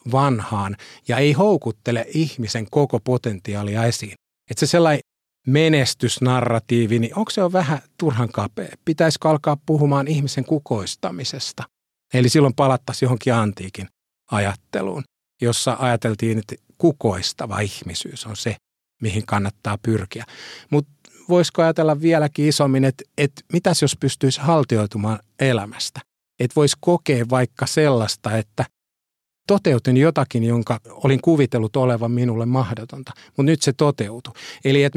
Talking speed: 125 wpm